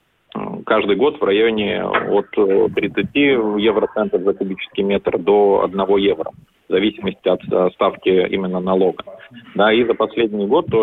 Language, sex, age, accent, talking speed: Russian, male, 30-49, native, 135 wpm